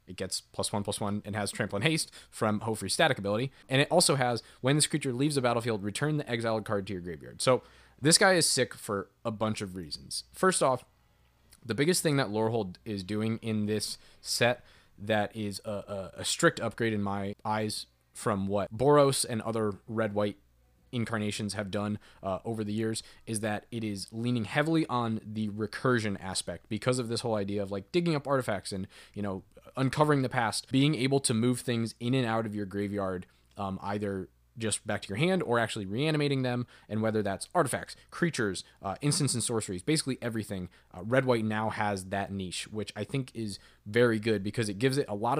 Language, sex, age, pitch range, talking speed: English, male, 20-39, 100-125 Hz, 205 wpm